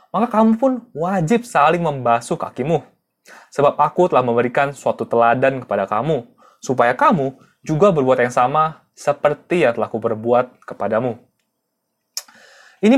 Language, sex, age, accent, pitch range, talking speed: Indonesian, male, 20-39, native, 130-220 Hz, 130 wpm